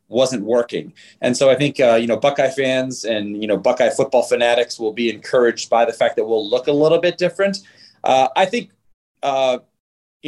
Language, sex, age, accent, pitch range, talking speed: English, male, 30-49, American, 125-150 Hz, 205 wpm